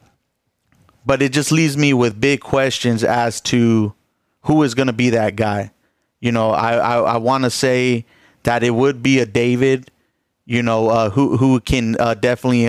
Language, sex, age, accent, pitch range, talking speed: English, male, 30-49, American, 115-130 Hz, 185 wpm